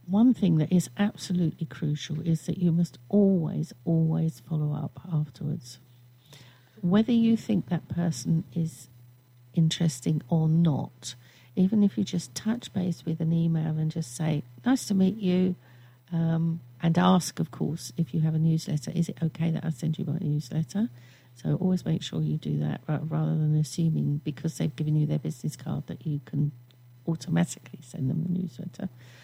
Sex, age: female, 50-69